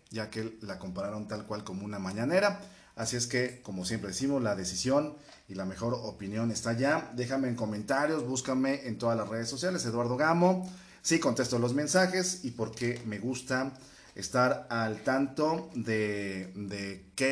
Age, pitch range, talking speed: 40-59, 110-140 Hz, 165 wpm